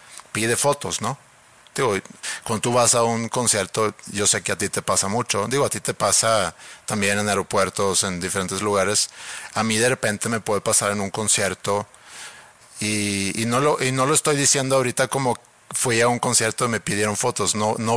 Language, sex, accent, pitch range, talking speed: Spanish, male, Mexican, 105-120 Hz, 200 wpm